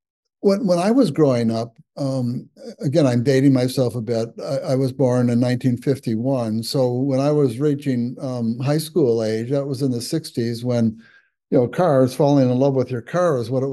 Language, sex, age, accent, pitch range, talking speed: English, male, 60-79, American, 125-150 Hz, 200 wpm